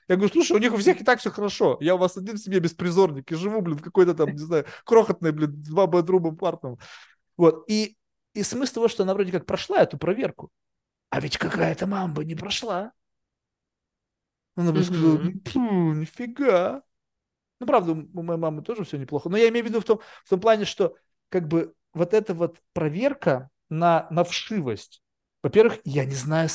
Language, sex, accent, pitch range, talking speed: Russian, male, native, 135-190 Hz, 190 wpm